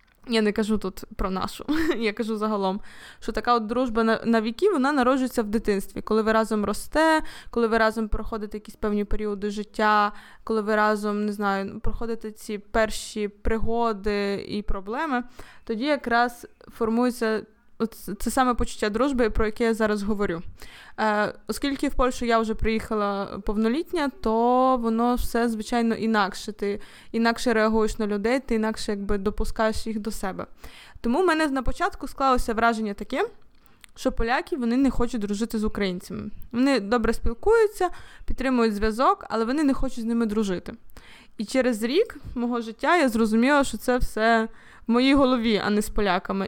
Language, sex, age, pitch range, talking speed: Ukrainian, female, 20-39, 215-250 Hz, 160 wpm